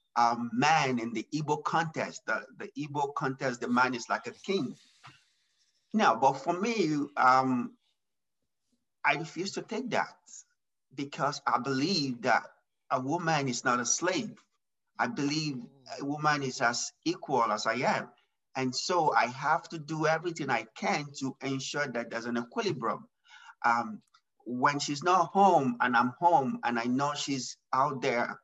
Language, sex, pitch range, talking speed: English, male, 130-175 Hz, 160 wpm